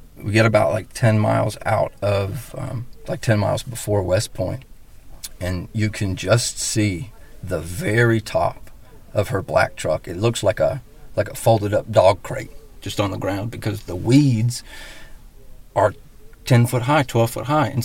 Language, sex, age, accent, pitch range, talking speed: English, male, 40-59, American, 100-120 Hz, 175 wpm